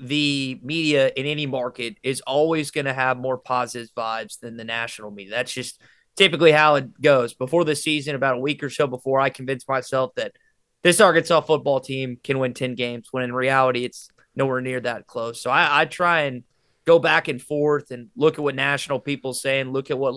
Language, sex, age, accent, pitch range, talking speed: English, male, 20-39, American, 130-155 Hz, 215 wpm